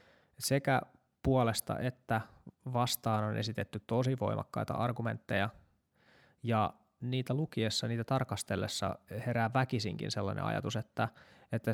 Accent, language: native, Finnish